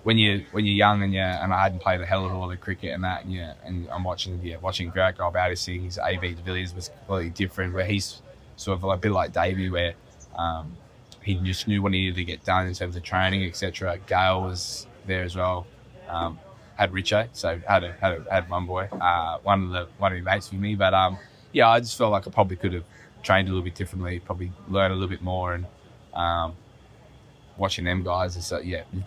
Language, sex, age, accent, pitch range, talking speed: English, male, 10-29, Australian, 90-100 Hz, 245 wpm